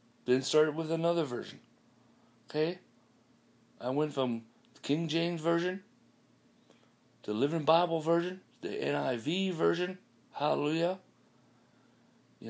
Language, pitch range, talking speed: English, 125-170 Hz, 105 wpm